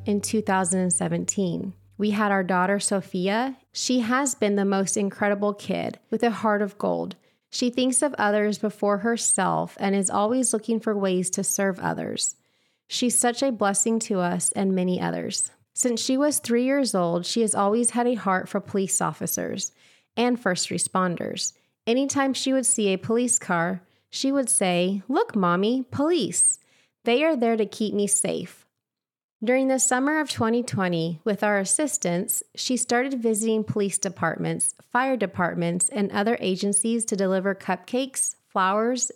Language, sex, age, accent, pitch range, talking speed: English, female, 30-49, American, 190-240 Hz, 160 wpm